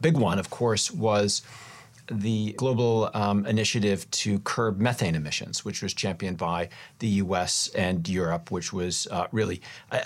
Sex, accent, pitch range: male, American, 100-120 Hz